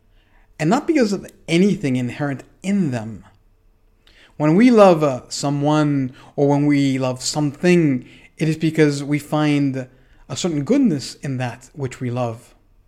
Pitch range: 110-160 Hz